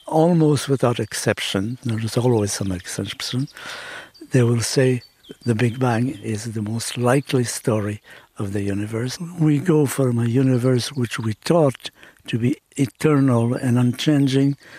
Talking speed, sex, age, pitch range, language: 140 wpm, male, 60-79, 120-145 Hz, English